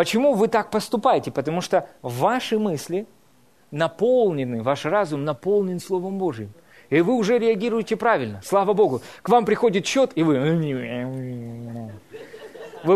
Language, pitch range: Russian, 155-225 Hz